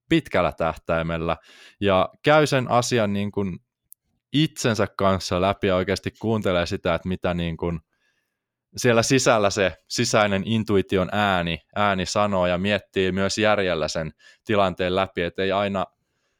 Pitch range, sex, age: 90-110 Hz, male, 20-39